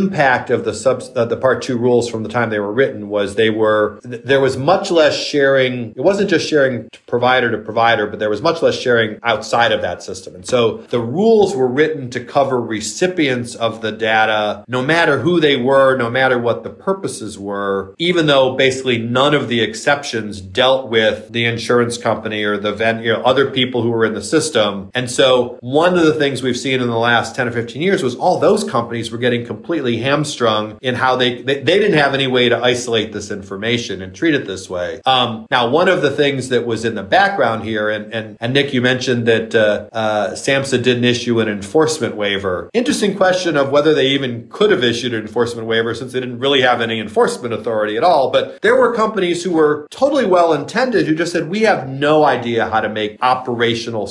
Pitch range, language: 115-145 Hz, English